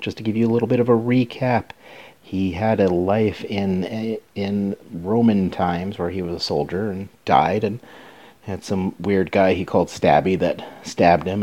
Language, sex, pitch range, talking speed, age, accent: English, male, 85-110 Hz, 190 wpm, 40-59, American